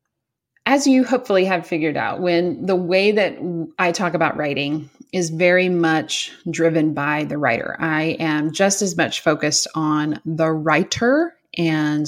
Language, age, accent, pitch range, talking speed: English, 30-49, American, 150-175 Hz, 155 wpm